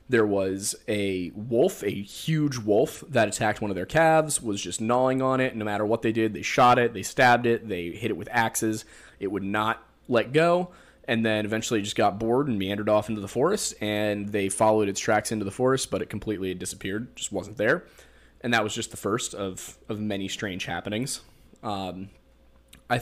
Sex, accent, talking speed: male, American, 210 wpm